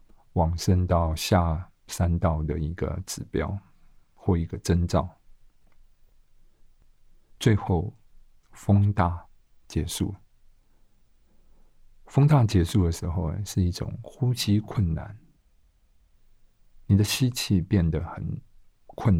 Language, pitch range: Chinese, 85-105 Hz